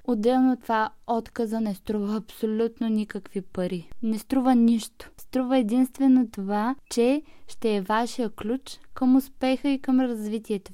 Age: 20-39